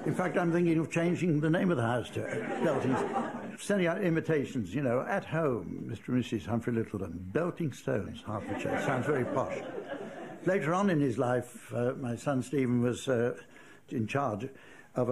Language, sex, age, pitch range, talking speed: English, male, 60-79, 120-155 Hz, 195 wpm